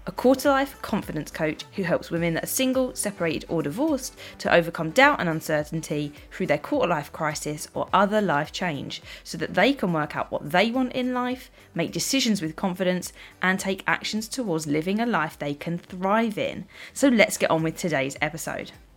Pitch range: 165-230 Hz